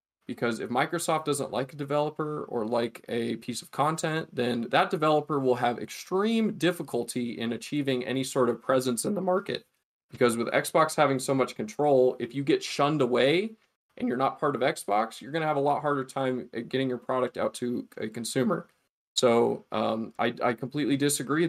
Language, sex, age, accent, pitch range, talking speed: English, male, 20-39, American, 125-160 Hz, 185 wpm